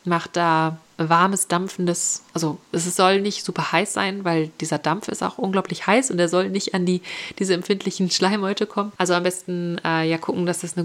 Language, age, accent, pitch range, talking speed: German, 30-49, German, 170-195 Hz, 205 wpm